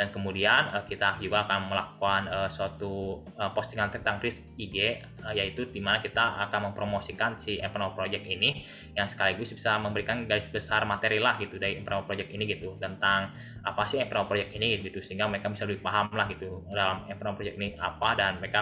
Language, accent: Indonesian, native